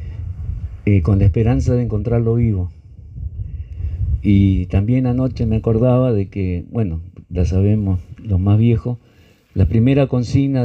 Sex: male